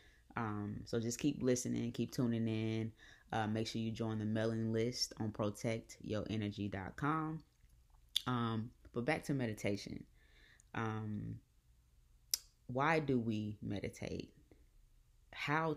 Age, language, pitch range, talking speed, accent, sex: 20-39, English, 105-125 Hz, 110 wpm, American, female